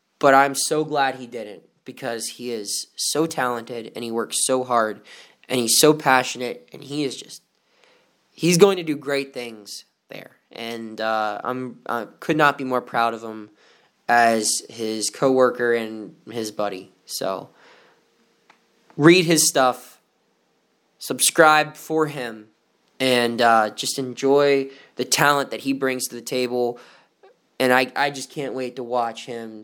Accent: American